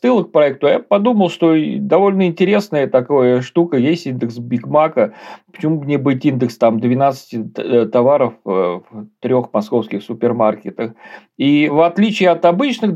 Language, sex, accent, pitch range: Russian, male, native, 120-165 Hz